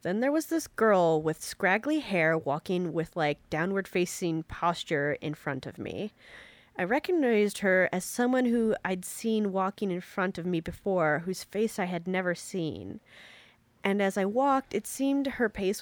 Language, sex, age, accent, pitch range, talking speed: English, female, 30-49, American, 160-205 Hz, 170 wpm